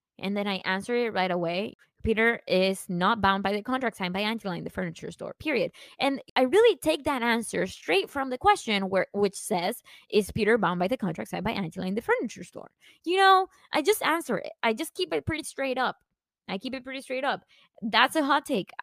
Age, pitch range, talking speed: 20-39, 195-275 Hz, 220 wpm